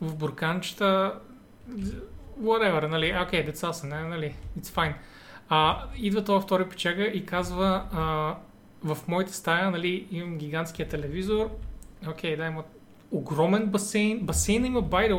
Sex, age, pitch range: male, 30-49, 160-205 Hz